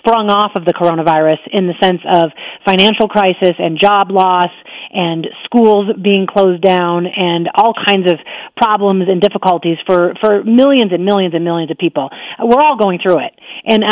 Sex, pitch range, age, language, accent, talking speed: female, 175-220 Hz, 40-59, English, American, 175 wpm